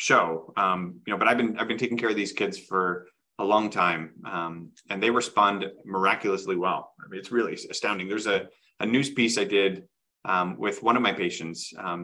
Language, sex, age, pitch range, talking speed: English, male, 30-49, 95-115 Hz, 215 wpm